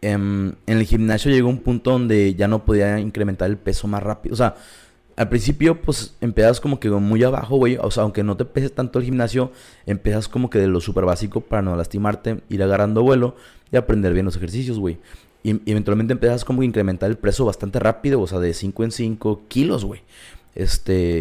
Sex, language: male, Spanish